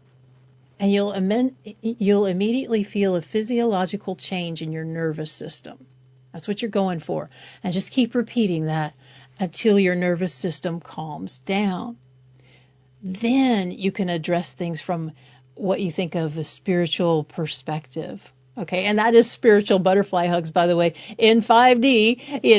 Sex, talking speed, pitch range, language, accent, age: female, 145 wpm, 160-215 Hz, English, American, 50-69